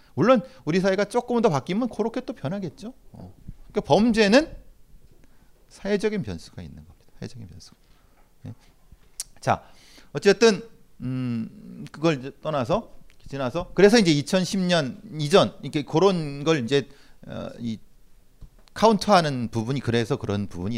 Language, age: Korean, 40-59